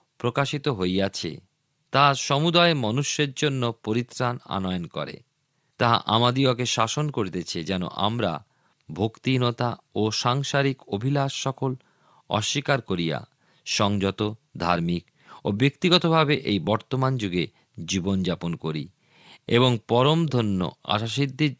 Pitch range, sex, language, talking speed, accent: 95-130 Hz, male, Bengali, 95 wpm, native